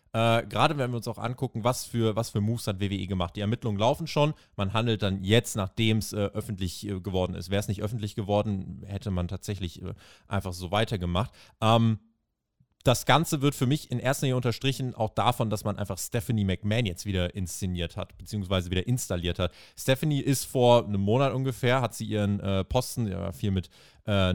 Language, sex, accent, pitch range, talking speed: German, male, German, 100-130 Hz, 200 wpm